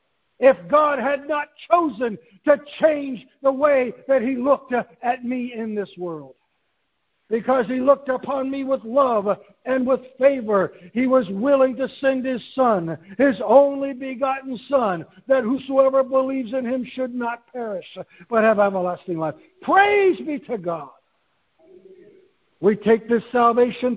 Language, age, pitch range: English, 60-79, 235-290 Hz